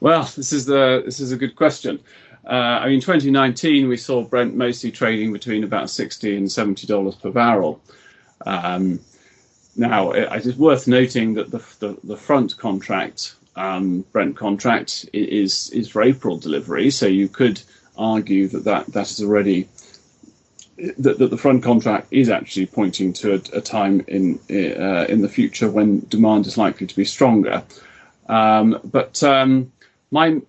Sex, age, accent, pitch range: male, 30-49, British, 100-125 Hz